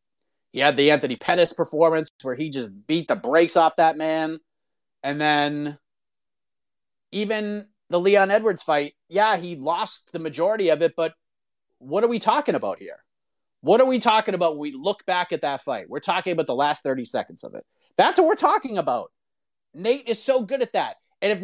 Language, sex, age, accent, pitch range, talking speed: English, male, 30-49, American, 180-285 Hz, 195 wpm